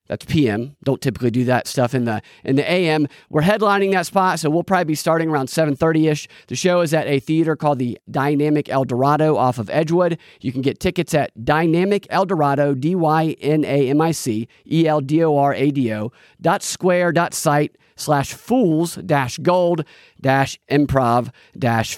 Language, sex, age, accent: English, male, 40-59, American